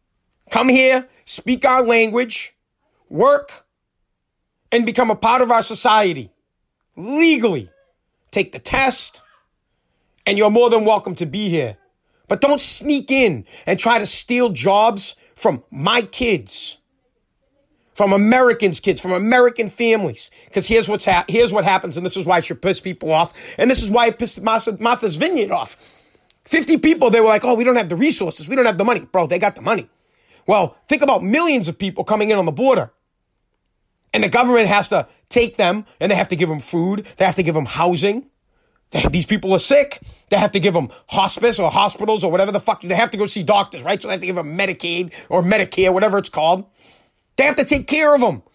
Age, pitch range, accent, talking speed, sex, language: 30-49, 185-250 Hz, American, 200 wpm, male, English